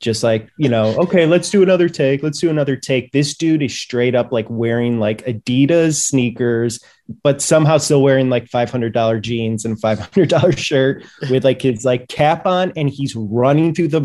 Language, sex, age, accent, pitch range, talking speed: English, male, 20-39, American, 120-160 Hz, 210 wpm